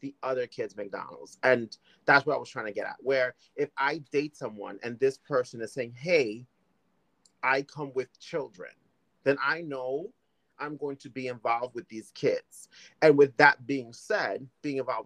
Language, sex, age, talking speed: English, male, 30-49, 185 wpm